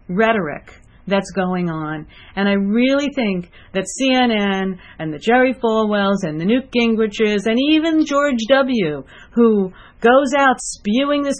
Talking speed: 140 wpm